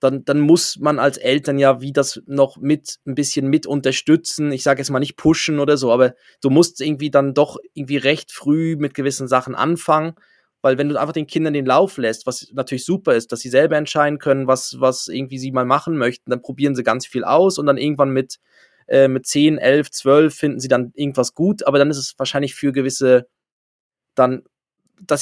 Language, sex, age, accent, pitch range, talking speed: German, male, 20-39, German, 130-150 Hz, 215 wpm